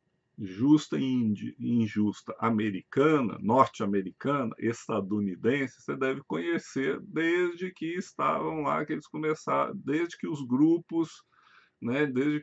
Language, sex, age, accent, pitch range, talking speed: Portuguese, male, 50-69, Brazilian, 120-160 Hz, 105 wpm